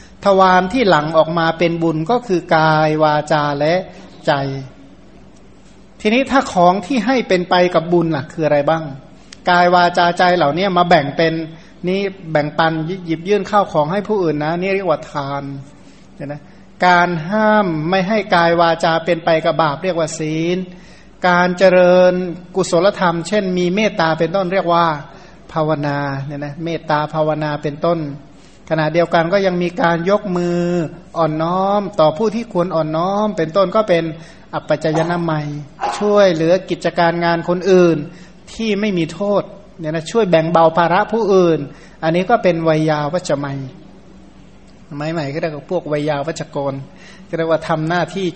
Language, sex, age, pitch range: Thai, male, 60-79, 155-185 Hz